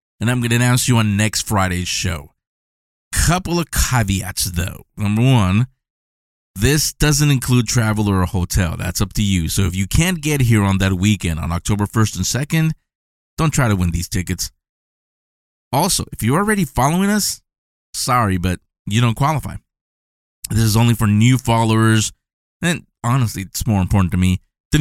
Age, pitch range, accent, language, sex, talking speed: 20-39, 95-125 Hz, American, English, male, 175 wpm